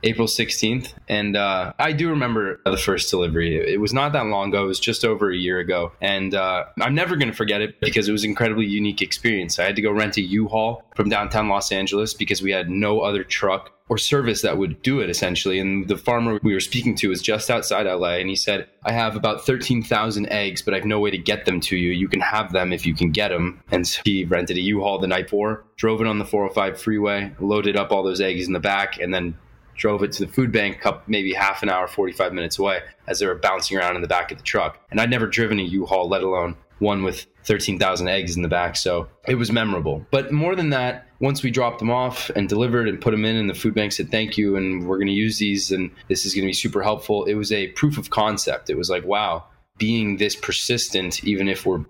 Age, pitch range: 20-39, 95-110 Hz